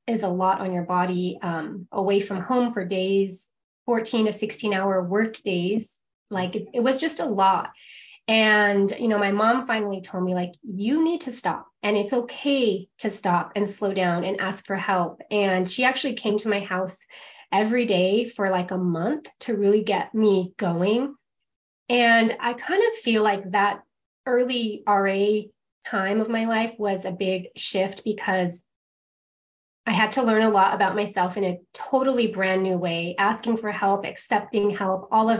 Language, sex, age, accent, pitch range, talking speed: English, female, 20-39, American, 185-225 Hz, 180 wpm